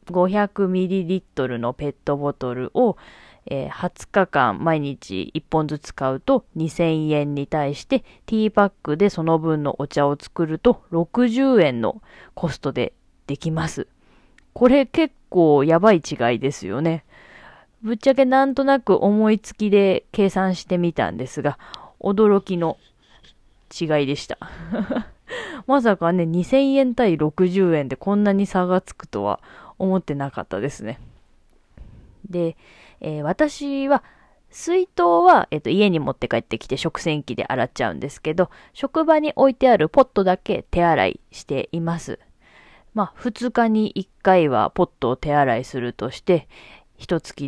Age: 20-39